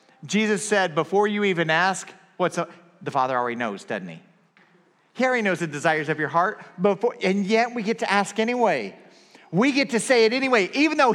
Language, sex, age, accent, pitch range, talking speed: English, male, 40-59, American, 130-200 Hz, 205 wpm